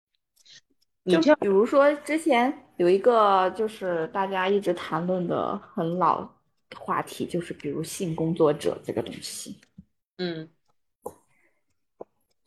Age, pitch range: 20-39, 165-215 Hz